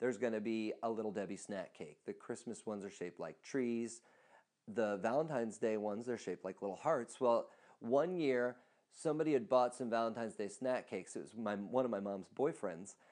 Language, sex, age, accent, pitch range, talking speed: English, male, 40-59, American, 110-150 Hz, 195 wpm